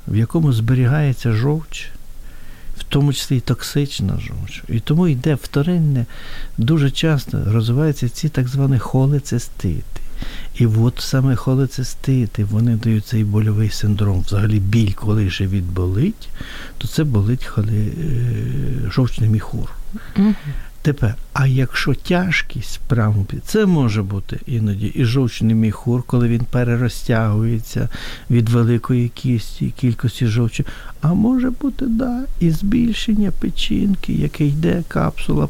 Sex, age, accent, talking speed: male, 60-79, native, 125 wpm